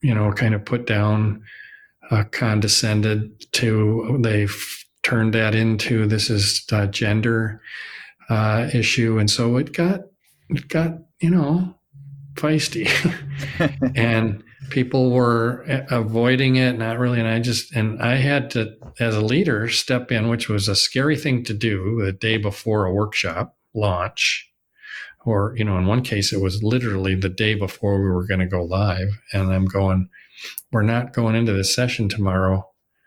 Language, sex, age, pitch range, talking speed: English, male, 40-59, 105-130 Hz, 160 wpm